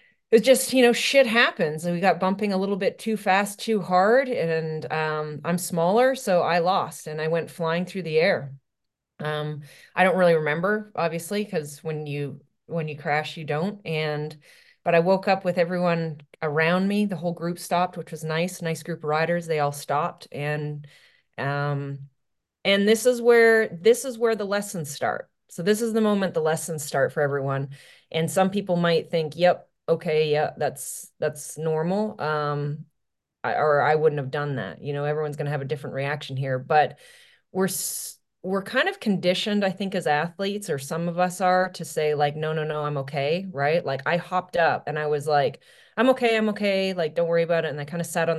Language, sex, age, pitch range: English, female, 30-49, 150-190 Hz